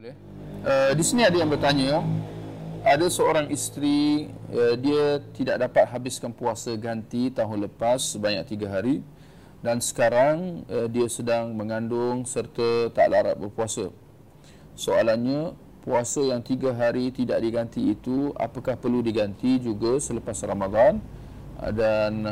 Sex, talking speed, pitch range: male, 125 wpm, 110-140 Hz